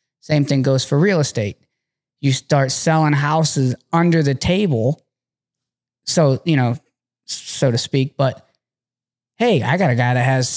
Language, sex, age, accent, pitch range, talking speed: English, male, 20-39, American, 125-150 Hz, 155 wpm